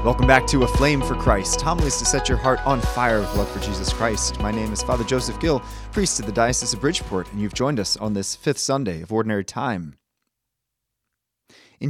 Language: English